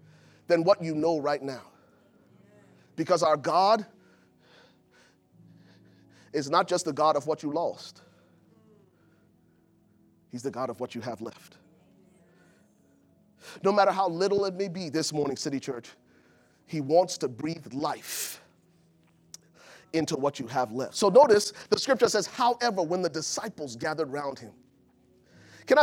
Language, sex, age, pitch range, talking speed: English, male, 30-49, 140-215 Hz, 140 wpm